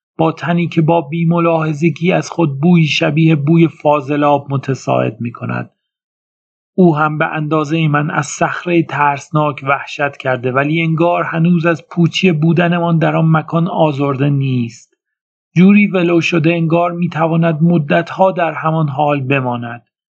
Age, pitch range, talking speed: 40-59, 145-170 Hz, 140 wpm